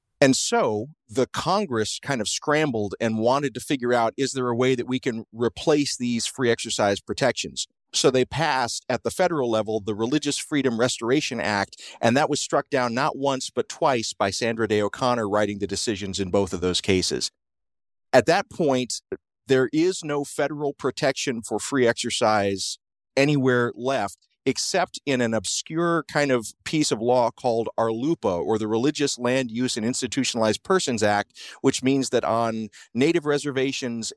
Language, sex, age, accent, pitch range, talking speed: English, male, 40-59, American, 110-140 Hz, 170 wpm